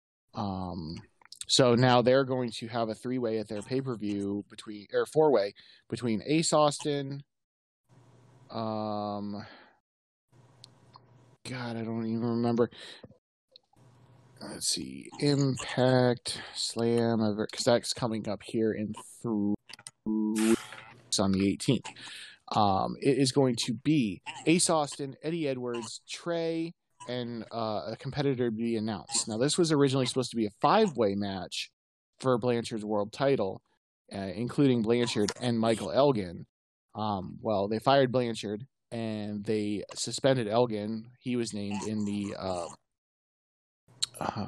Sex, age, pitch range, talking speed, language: male, 30-49, 105-130 Hz, 125 wpm, English